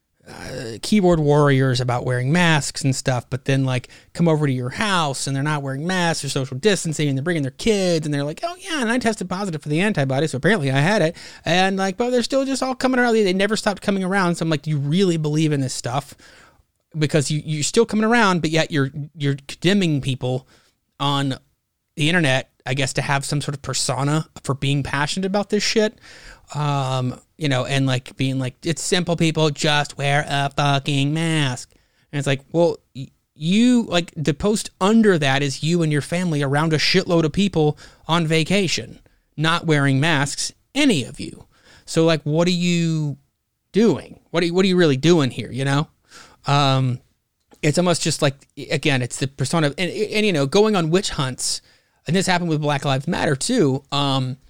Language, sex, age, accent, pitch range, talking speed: English, male, 30-49, American, 135-175 Hz, 205 wpm